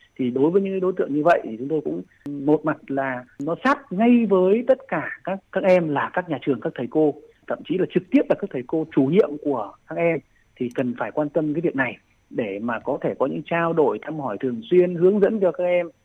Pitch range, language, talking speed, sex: 145-195 Hz, Vietnamese, 260 wpm, male